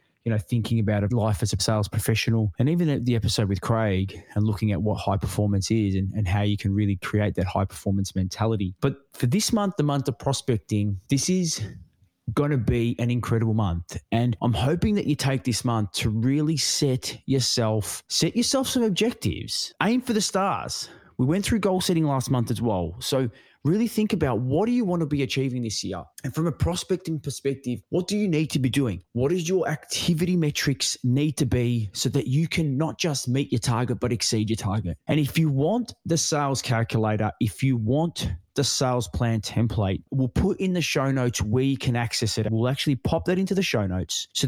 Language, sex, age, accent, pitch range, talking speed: English, male, 20-39, Australian, 110-145 Hz, 215 wpm